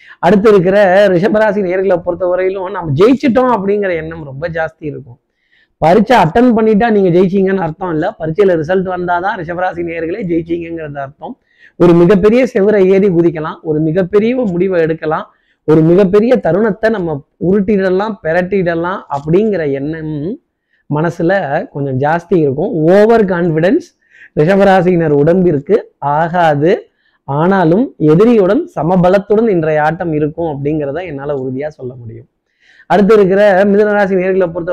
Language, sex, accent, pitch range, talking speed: Tamil, male, native, 160-205 Hz, 120 wpm